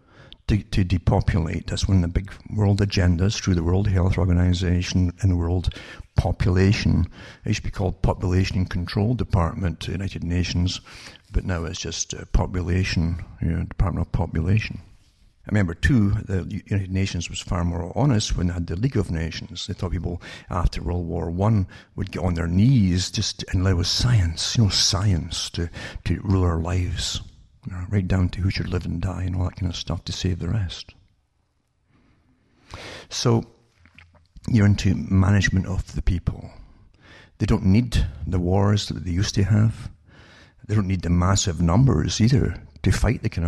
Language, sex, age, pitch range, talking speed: English, male, 60-79, 85-100 Hz, 180 wpm